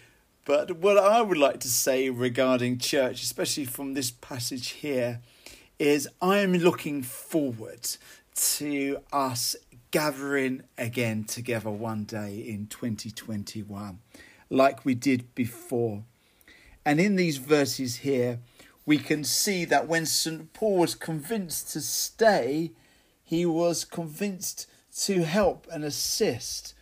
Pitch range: 125-165 Hz